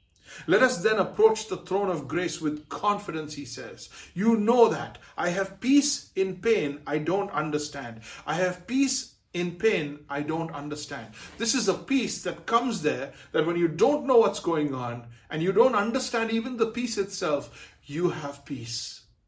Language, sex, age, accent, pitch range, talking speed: English, male, 60-79, Indian, 150-200 Hz, 175 wpm